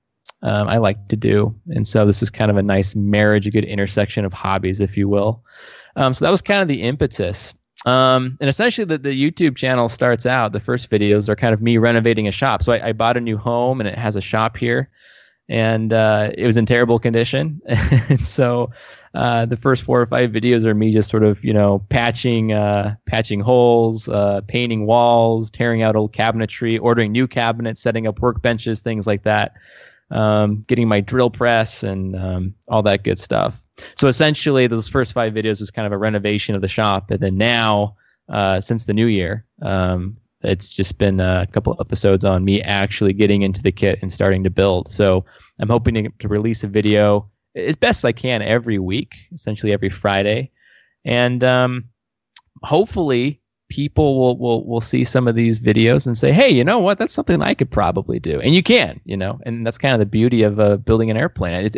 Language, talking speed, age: English, 205 wpm, 20-39